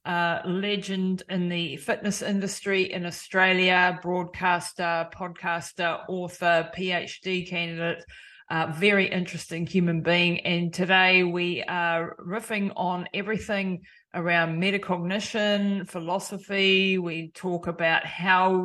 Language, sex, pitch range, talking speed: English, female, 165-190 Hz, 105 wpm